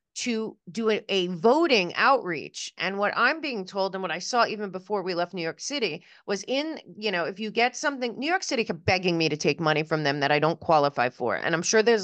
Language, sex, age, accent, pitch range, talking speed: English, female, 30-49, American, 175-235 Hz, 245 wpm